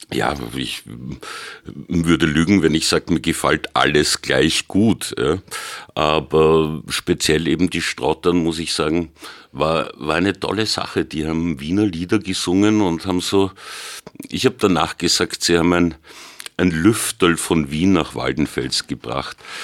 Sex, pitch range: male, 80-95 Hz